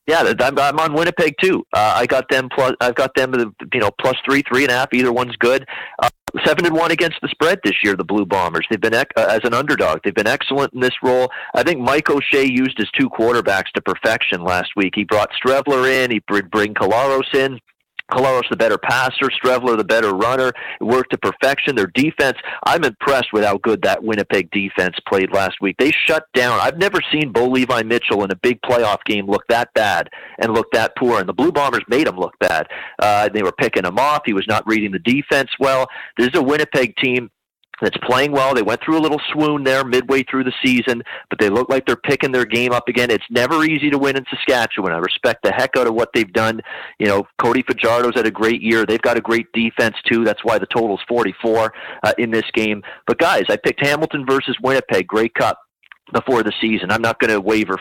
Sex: male